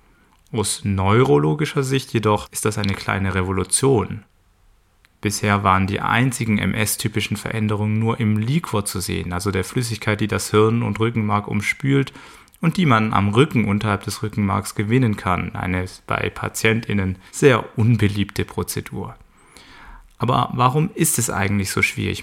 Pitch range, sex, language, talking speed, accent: 100-120 Hz, male, German, 140 wpm, German